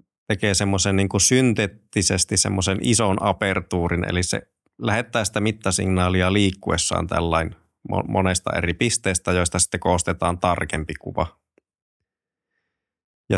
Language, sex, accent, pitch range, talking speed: Finnish, male, native, 85-100 Hz, 100 wpm